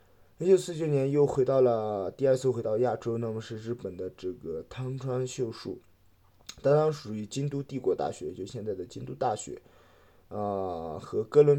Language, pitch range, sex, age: Chinese, 105-140 Hz, male, 20-39